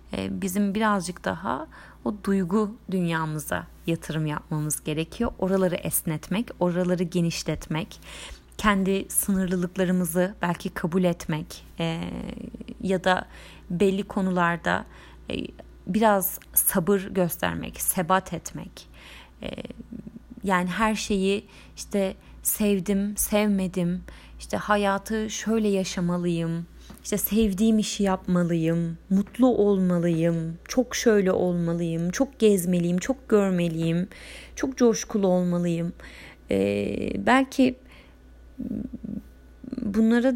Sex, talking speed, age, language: female, 85 wpm, 30-49, Turkish